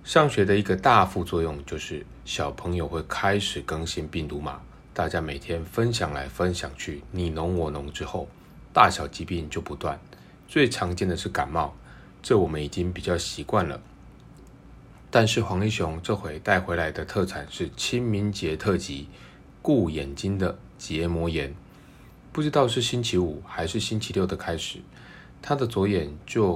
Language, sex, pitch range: Chinese, male, 80-100 Hz